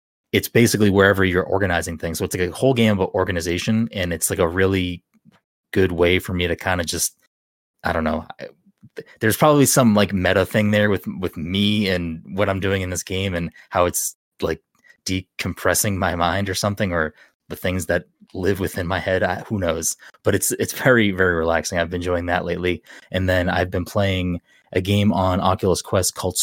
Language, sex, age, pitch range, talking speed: English, male, 20-39, 90-105 Hz, 200 wpm